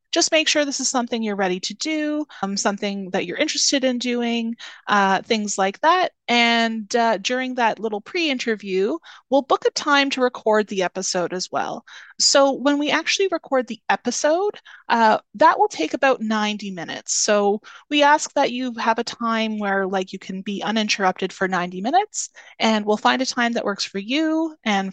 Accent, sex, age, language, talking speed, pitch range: American, female, 30-49, English, 190 wpm, 195-280 Hz